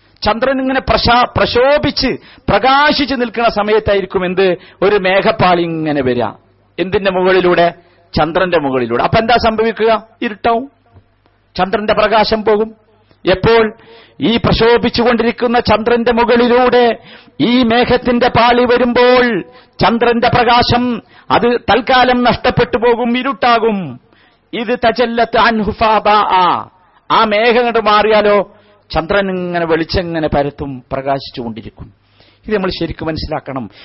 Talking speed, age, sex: 90 wpm, 50-69, male